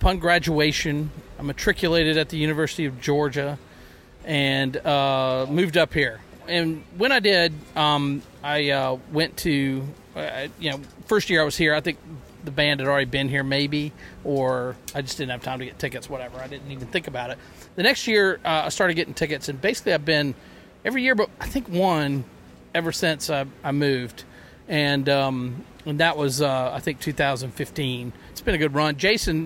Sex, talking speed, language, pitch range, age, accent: male, 190 wpm, English, 135-165 Hz, 40-59, American